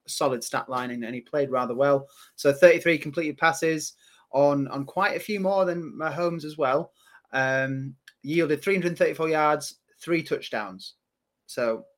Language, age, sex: English, 20-39, male